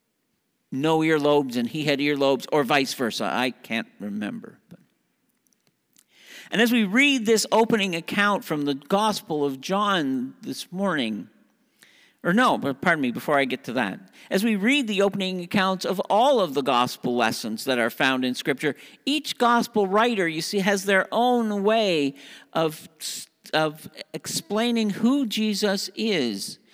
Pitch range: 155-225 Hz